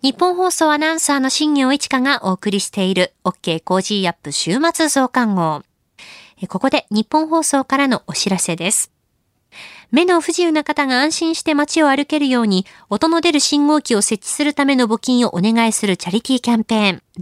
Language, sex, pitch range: Japanese, female, 185-265 Hz